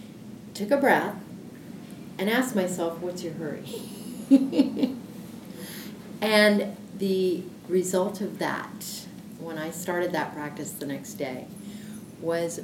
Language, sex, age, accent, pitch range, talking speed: English, female, 40-59, American, 185-220 Hz, 110 wpm